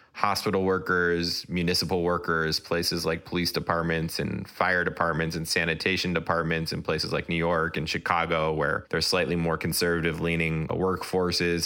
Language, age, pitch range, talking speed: English, 20-39, 80-95 Hz, 140 wpm